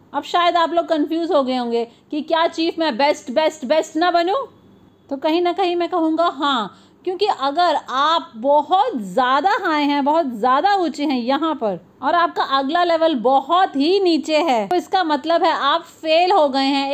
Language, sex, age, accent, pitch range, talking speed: Hindi, female, 30-49, native, 295-360 Hz, 190 wpm